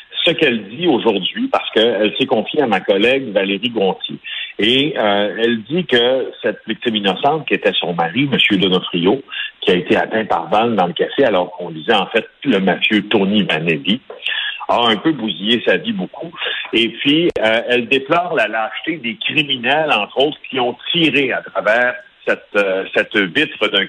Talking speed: 185 wpm